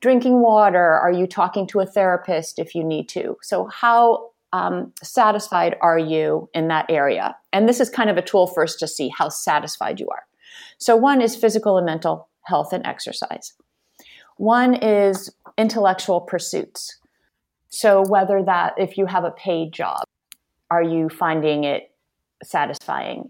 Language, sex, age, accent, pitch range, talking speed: English, female, 30-49, American, 170-230 Hz, 160 wpm